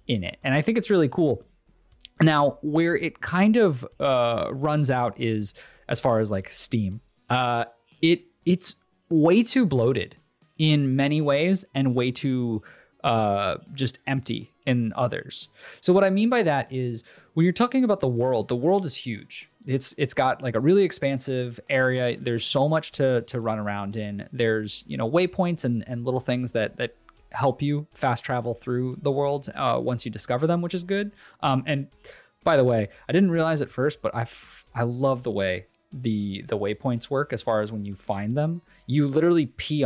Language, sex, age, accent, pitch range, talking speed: English, male, 20-39, American, 115-155 Hz, 195 wpm